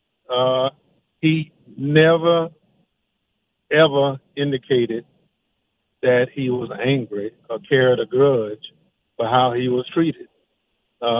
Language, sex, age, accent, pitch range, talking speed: English, male, 50-69, American, 115-140 Hz, 100 wpm